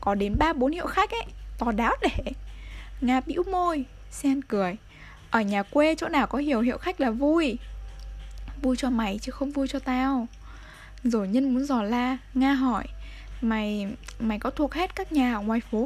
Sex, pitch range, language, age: female, 225-285 Hz, Vietnamese, 10-29